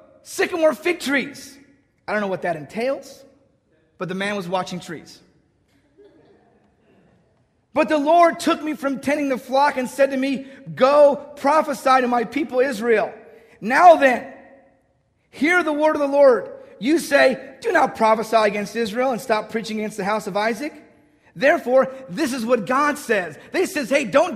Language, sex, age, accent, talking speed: English, male, 30-49, American, 170 wpm